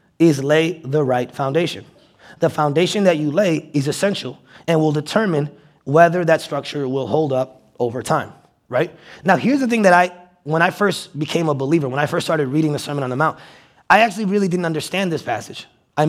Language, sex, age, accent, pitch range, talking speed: English, male, 20-39, American, 145-185 Hz, 200 wpm